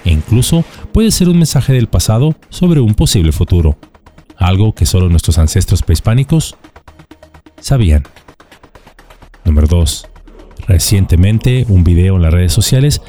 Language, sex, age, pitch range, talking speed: Spanish, male, 40-59, 90-135 Hz, 130 wpm